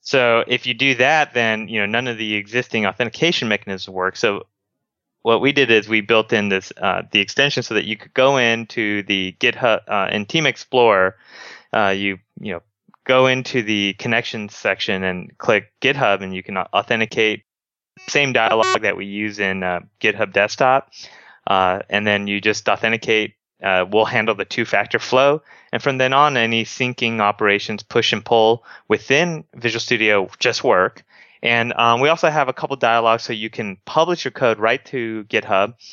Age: 20-39